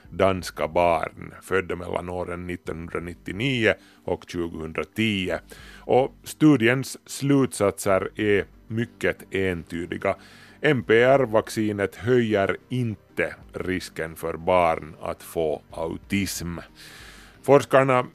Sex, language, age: male, Swedish, 30-49